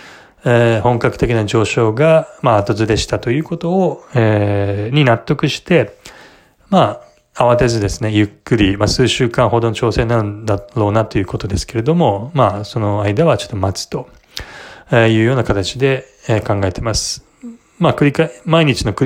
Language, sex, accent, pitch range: Japanese, male, native, 105-135 Hz